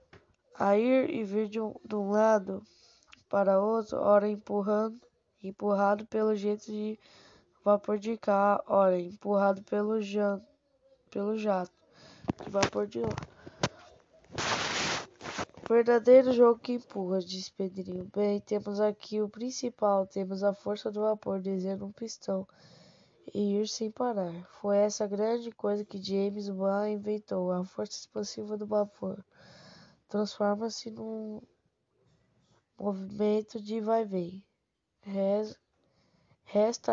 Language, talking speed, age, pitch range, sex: Portuguese, 120 wpm, 10-29, 195-220 Hz, female